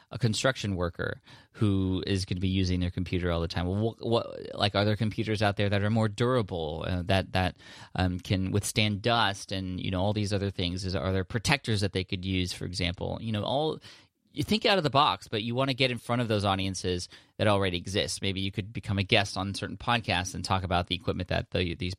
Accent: American